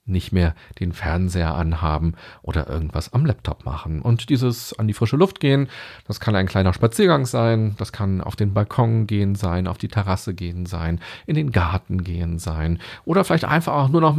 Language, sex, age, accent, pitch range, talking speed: German, male, 40-59, German, 95-130 Hz, 195 wpm